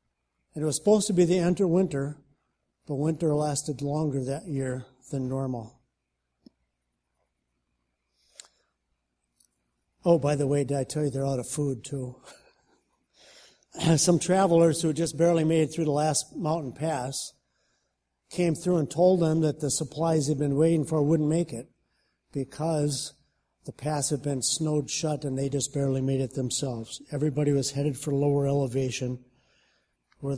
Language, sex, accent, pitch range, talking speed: English, male, American, 130-160 Hz, 150 wpm